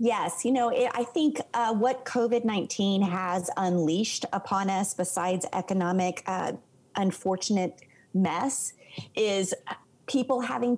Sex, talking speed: female, 110 wpm